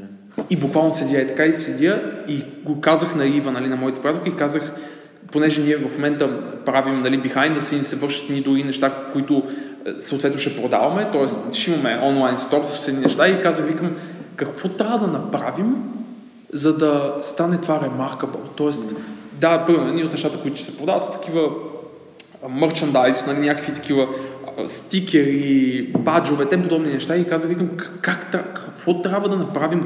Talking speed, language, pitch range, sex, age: 175 wpm, Bulgarian, 140-165 Hz, male, 20-39